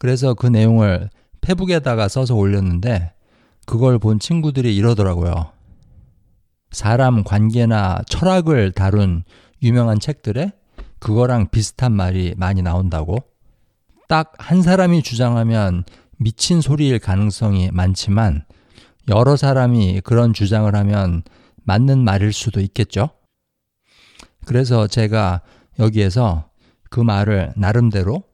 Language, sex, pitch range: Korean, male, 95-125 Hz